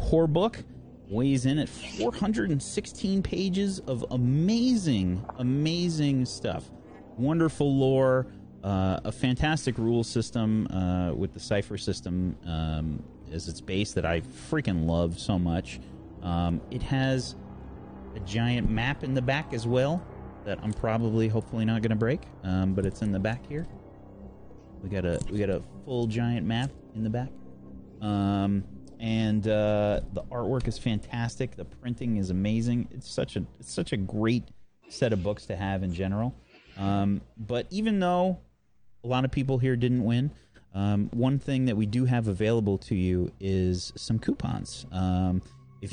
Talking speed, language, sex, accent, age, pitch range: 160 wpm, English, male, American, 30-49, 95-130 Hz